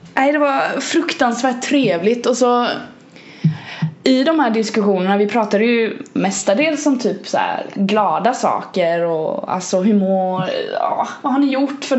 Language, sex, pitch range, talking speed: Swedish, female, 185-250 Hz, 150 wpm